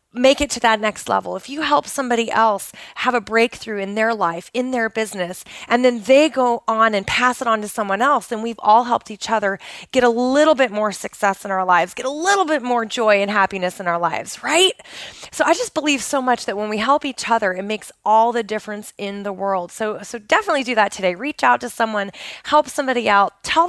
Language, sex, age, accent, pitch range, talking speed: English, female, 20-39, American, 205-270 Hz, 235 wpm